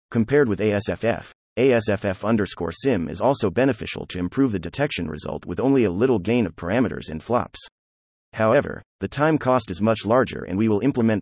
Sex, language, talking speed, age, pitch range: male, English, 180 wpm, 30-49, 90-120 Hz